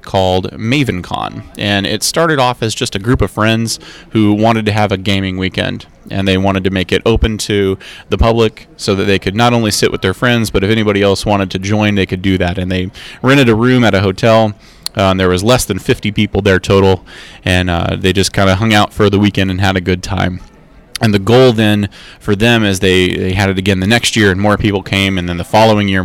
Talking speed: 250 wpm